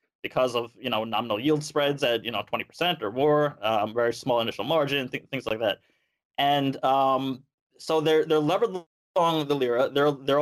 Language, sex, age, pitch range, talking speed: English, male, 20-39, 125-150 Hz, 190 wpm